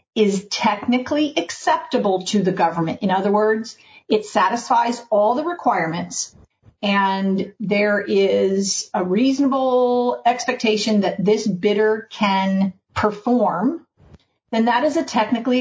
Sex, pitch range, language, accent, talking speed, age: female, 205-255 Hz, English, American, 115 wpm, 40-59